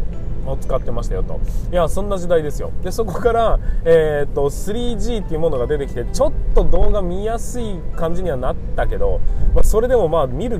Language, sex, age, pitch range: Japanese, male, 20-39, 145-235 Hz